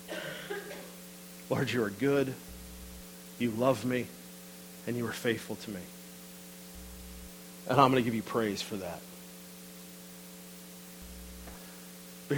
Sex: male